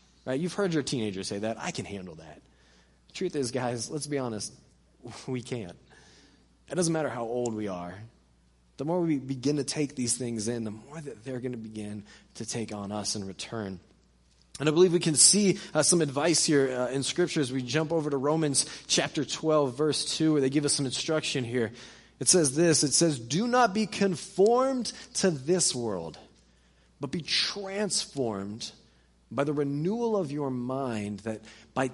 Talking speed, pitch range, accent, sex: 190 wpm, 105-155 Hz, American, male